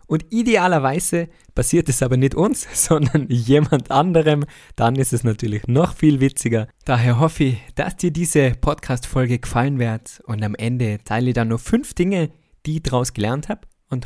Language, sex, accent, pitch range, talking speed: German, male, German, 115-145 Hz, 175 wpm